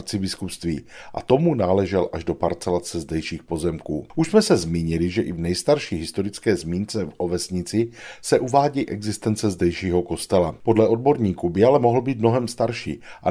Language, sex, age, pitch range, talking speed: Czech, male, 40-59, 90-120 Hz, 155 wpm